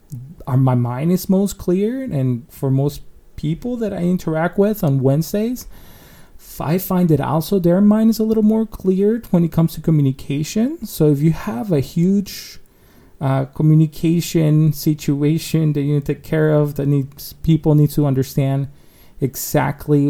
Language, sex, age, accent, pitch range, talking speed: English, male, 30-49, American, 130-165 Hz, 160 wpm